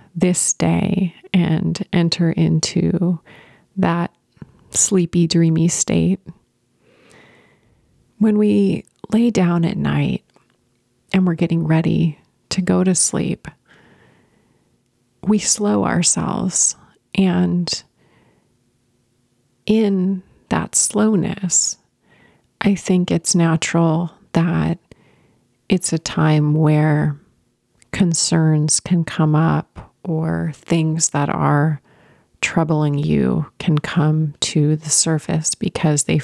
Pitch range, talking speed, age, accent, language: 150-180 Hz, 95 wpm, 30-49, American, English